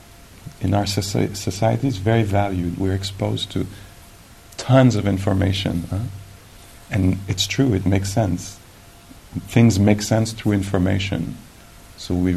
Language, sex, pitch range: English, male, 90-105 Hz